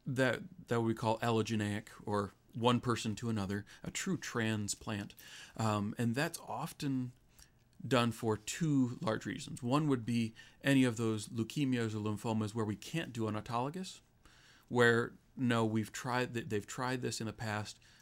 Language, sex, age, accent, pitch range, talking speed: English, male, 40-59, American, 110-125 Hz, 155 wpm